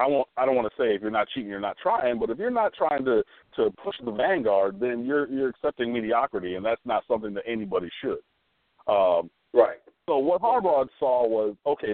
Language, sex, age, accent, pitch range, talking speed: English, male, 50-69, American, 105-180 Hz, 220 wpm